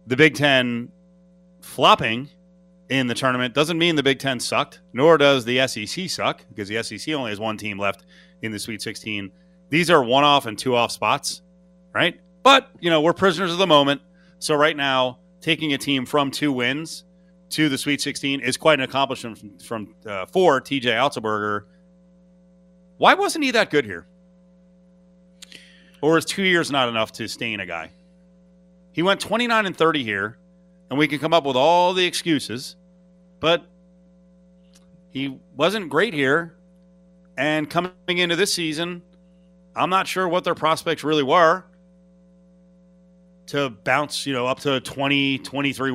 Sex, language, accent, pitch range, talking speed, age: male, English, American, 130-180 Hz, 165 wpm, 30-49